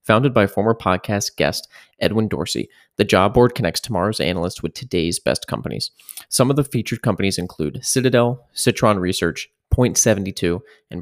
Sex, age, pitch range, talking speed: male, 20-39, 100-125 Hz, 150 wpm